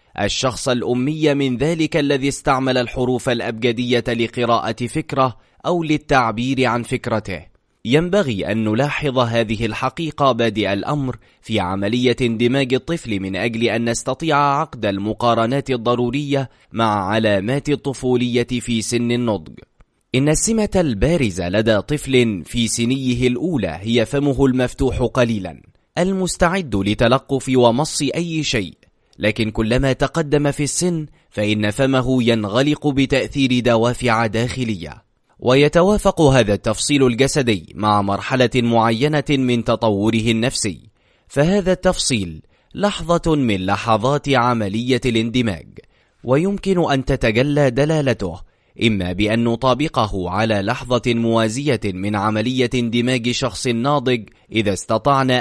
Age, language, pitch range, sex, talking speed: 20-39, Arabic, 110-140 Hz, male, 110 wpm